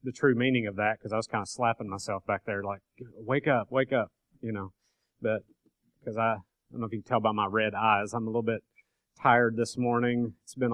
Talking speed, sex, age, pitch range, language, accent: 245 wpm, male, 30-49, 105-115 Hz, English, American